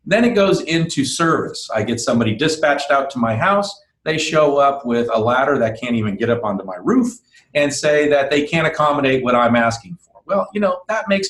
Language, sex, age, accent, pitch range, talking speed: English, male, 40-59, American, 125-185 Hz, 225 wpm